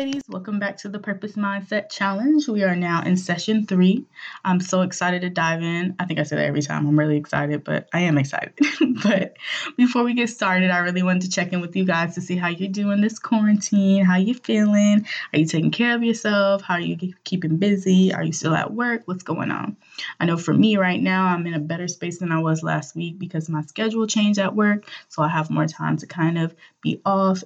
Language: English